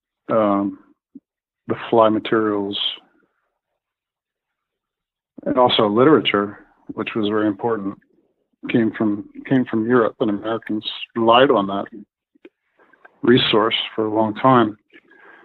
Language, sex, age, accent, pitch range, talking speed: English, male, 50-69, American, 110-125 Hz, 100 wpm